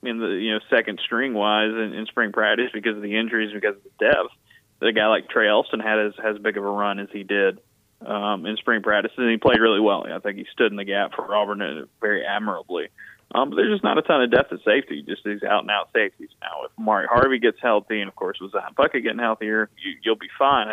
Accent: American